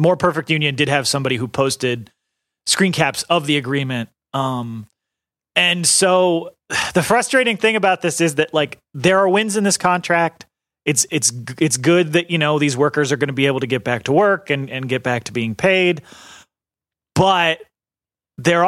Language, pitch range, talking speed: English, 130-175 Hz, 185 wpm